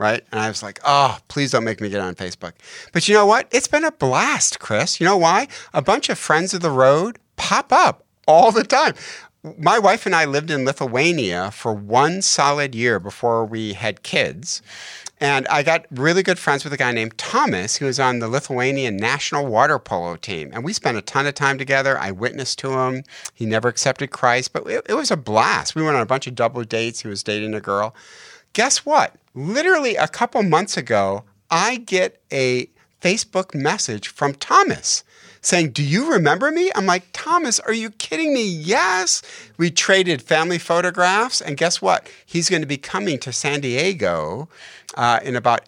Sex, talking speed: male, 200 wpm